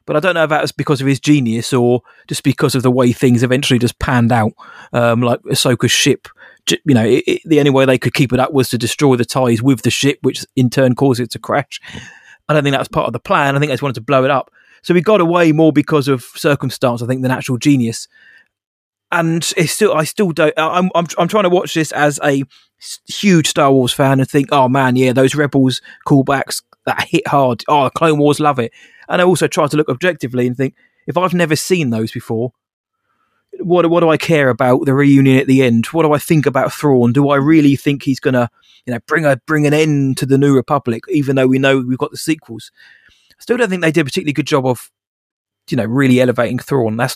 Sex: male